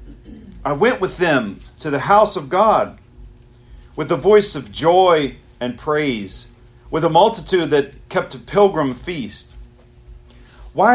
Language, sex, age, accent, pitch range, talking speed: English, male, 40-59, American, 120-185 Hz, 135 wpm